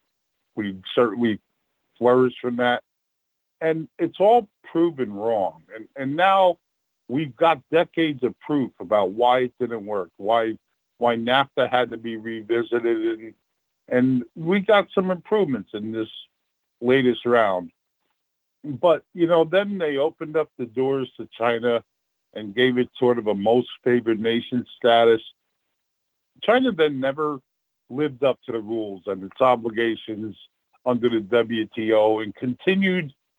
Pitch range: 115-150 Hz